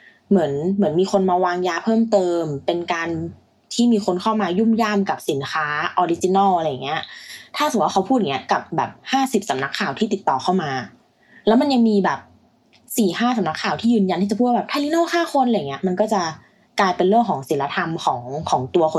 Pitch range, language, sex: 155-210 Hz, Thai, female